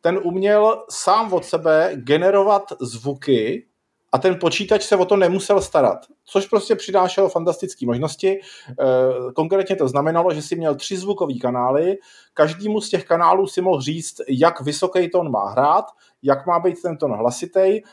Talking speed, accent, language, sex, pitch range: 155 wpm, native, Czech, male, 135-180 Hz